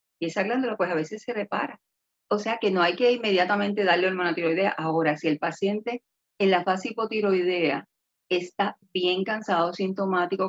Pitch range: 180-215 Hz